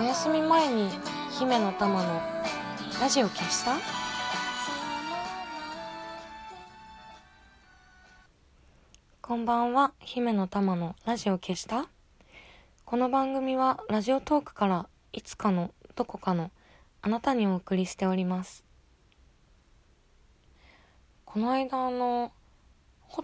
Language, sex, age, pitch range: Japanese, female, 20-39, 170-240 Hz